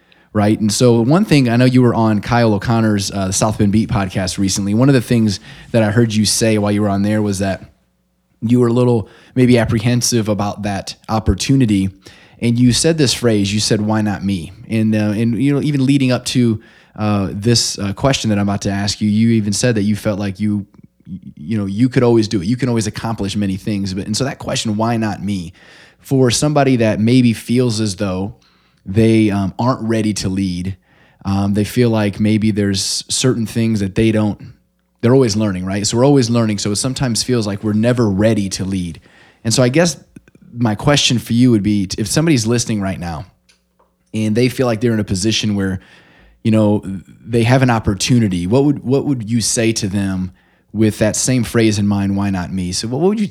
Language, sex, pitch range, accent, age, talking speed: English, male, 100-120 Hz, American, 20-39, 220 wpm